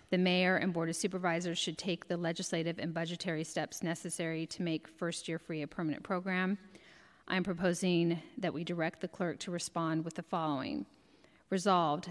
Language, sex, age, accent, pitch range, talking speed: English, female, 40-59, American, 160-185 Hz, 180 wpm